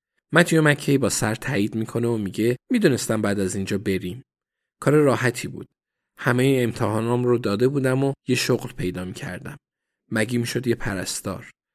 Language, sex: Persian, male